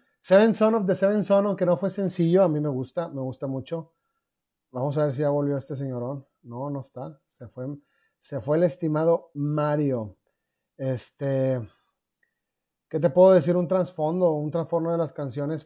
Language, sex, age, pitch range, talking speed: Spanish, male, 30-49, 140-175 Hz, 180 wpm